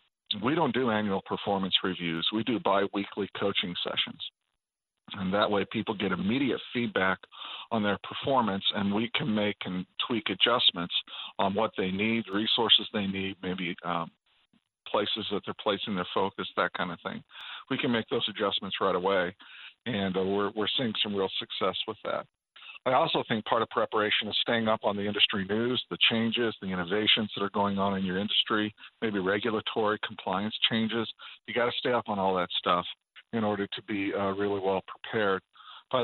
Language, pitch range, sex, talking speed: English, 95-115 Hz, male, 180 wpm